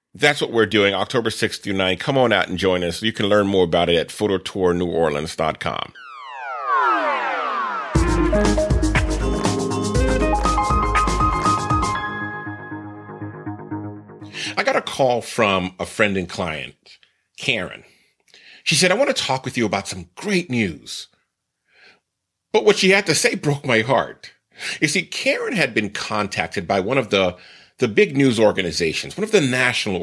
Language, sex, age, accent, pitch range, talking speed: English, male, 40-59, American, 100-145 Hz, 140 wpm